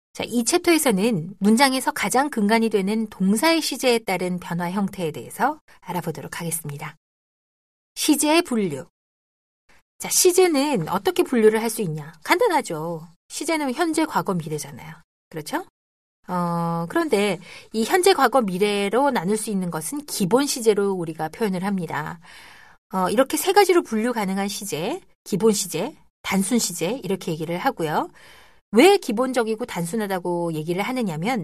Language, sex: Korean, female